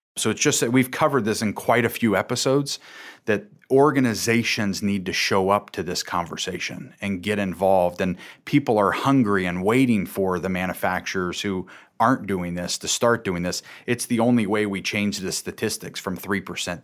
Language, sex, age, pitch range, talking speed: English, male, 30-49, 95-120 Hz, 180 wpm